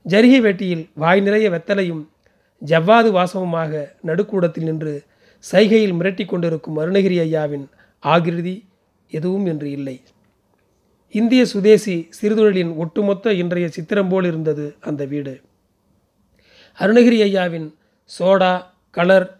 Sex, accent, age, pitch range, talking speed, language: male, native, 30-49, 160-205 Hz, 100 wpm, Tamil